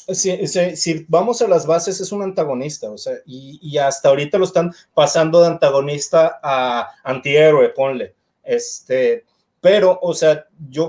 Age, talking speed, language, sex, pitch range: 30-49, 165 wpm, Spanish, male, 155-200 Hz